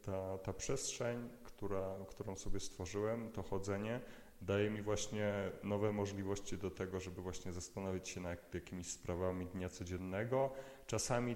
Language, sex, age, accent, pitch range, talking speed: Polish, male, 30-49, native, 95-110 Hz, 130 wpm